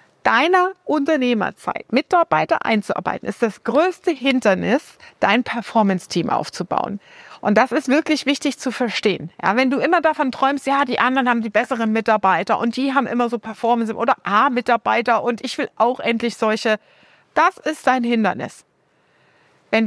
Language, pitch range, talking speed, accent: German, 225-275 Hz, 150 wpm, German